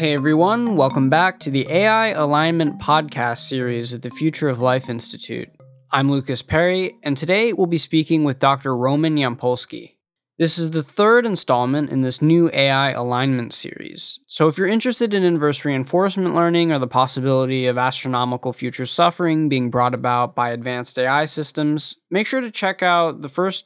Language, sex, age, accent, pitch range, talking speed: English, male, 20-39, American, 130-175 Hz, 170 wpm